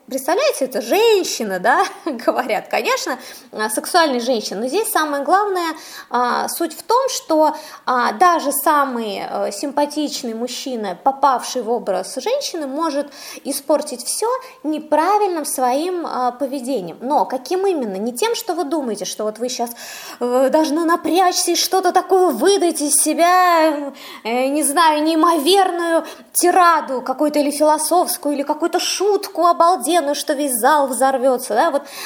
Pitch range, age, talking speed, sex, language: 255-345 Hz, 20-39, 125 wpm, female, Russian